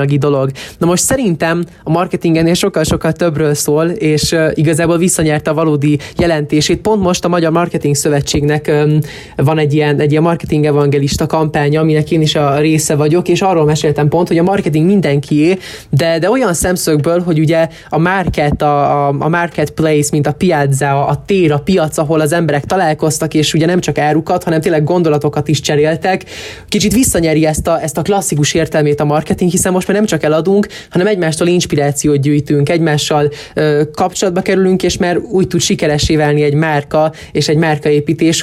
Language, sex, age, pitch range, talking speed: Hungarian, male, 20-39, 150-175 Hz, 170 wpm